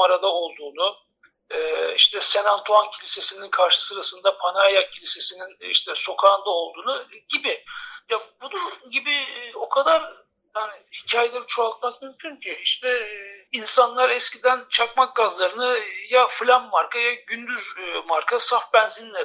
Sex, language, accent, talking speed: male, Turkish, native, 115 wpm